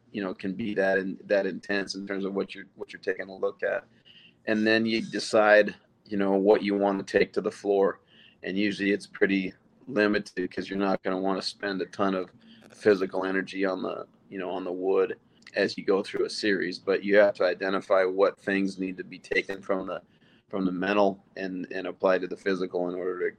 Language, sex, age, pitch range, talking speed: English, male, 30-49, 95-100 Hz, 230 wpm